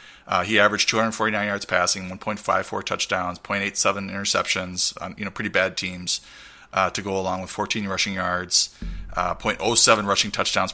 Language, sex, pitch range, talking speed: English, male, 95-105 Hz, 155 wpm